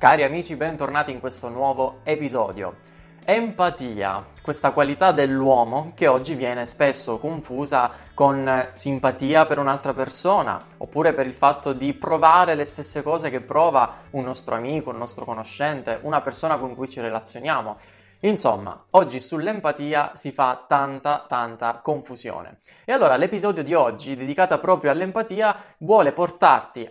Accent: native